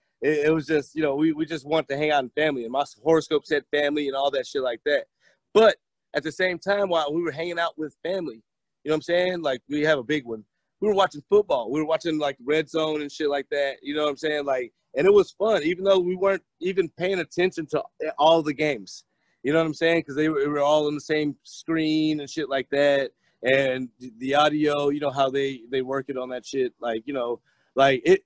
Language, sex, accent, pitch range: English, male, American, 140-165 Hz